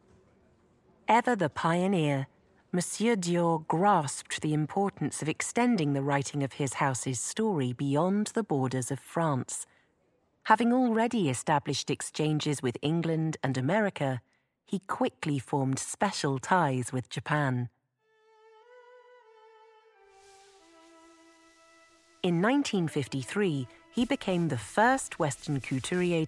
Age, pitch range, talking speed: 40-59, 140-230 Hz, 100 wpm